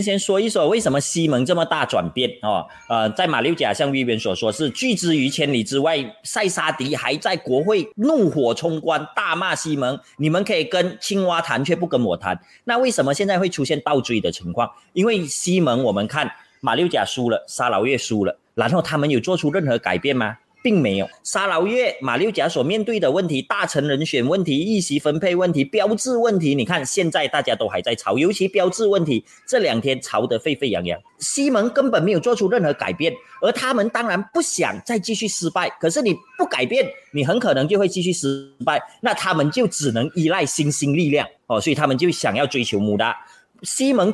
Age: 30-49